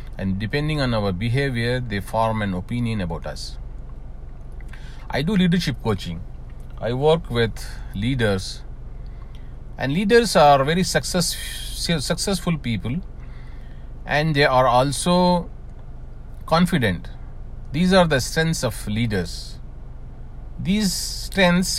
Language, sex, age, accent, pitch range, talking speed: English, male, 40-59, Indian, 100-145 Hz, 105 wpm